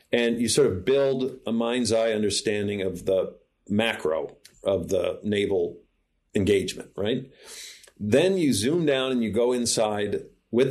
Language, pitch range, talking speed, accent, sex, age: English, 105-135 Hz, 145 wpm, American, male, 40-59